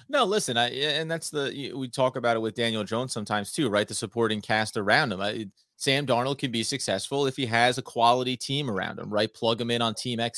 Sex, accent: male, American